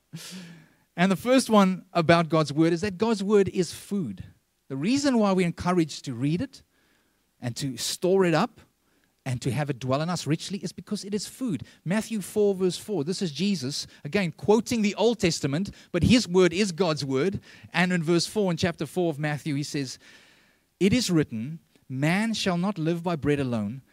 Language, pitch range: English, 145-200 Hz